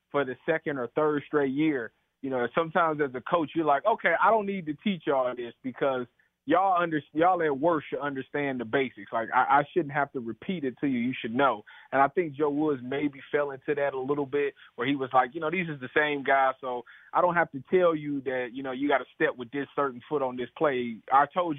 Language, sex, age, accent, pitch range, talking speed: English, male, 30-49, American, 130-150 Hz, 255 wpm